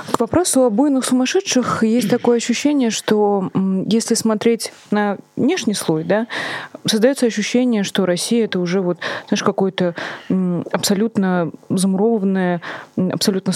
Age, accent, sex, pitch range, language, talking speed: 20-39, native, female, 180-225 Hz, Russian, 120 wpm